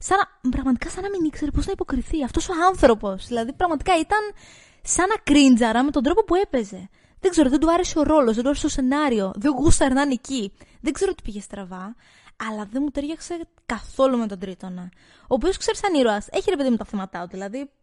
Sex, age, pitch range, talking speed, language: female, 20-39, 210-305 Hz, 210 wpm, Greek